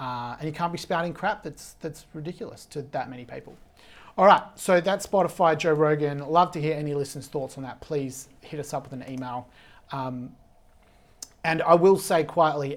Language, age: English, 30-49